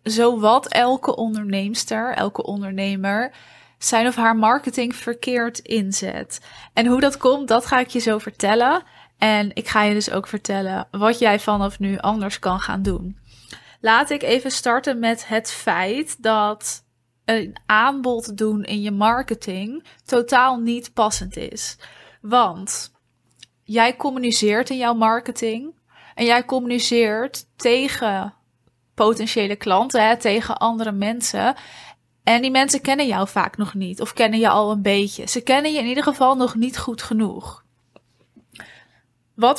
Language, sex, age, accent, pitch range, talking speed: Dutch, female, 20-39, Dutch, 210-245 Hz, 145 wpm